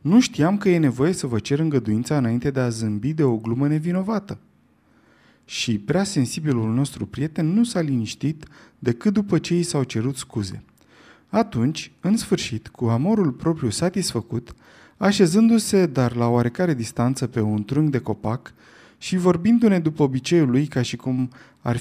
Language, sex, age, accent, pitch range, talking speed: Romanian, male, 30-49, native, 120-170 Hz, 160 wpm